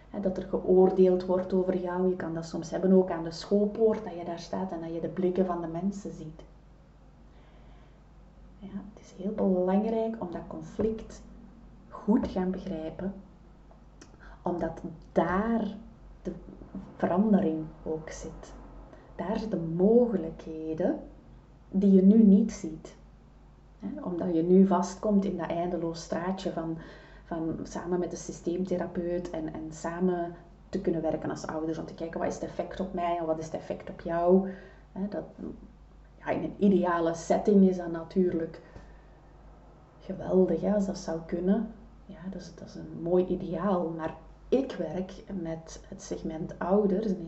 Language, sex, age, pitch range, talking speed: Dutch, female, 30-49, 165-195 Hz, 145 wpm